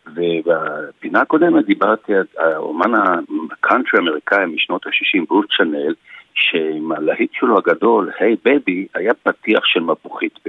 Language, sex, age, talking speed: Hebrew, male, 60-79, 125 wpm